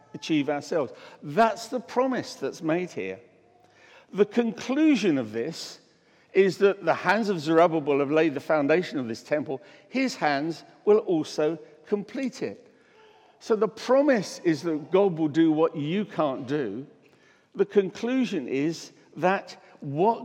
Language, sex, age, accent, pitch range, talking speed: English, male, 60-79, British, 155-220 Hz, 140 wpm